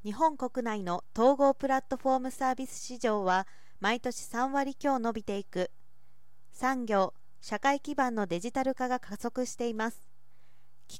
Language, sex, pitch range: Japanese, female, 195-255 Hz